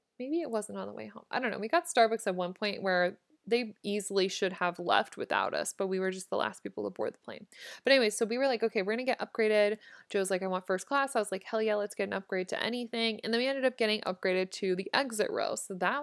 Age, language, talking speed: 20-39, English, 285 wpm